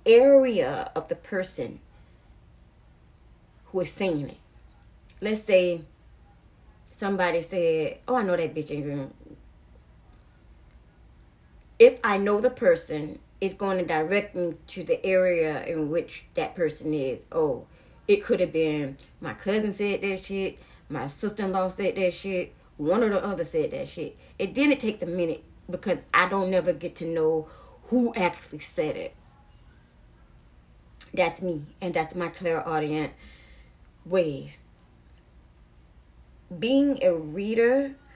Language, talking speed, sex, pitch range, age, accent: English, 130 wpm, female, 150-200 Hz, 30-49, American